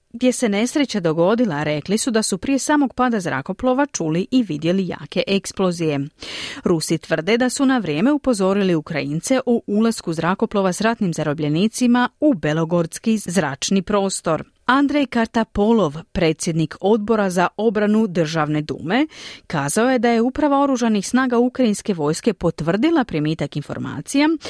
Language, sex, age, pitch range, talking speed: Croatian, female, 40-59, 165-245 Hz, 135 wpm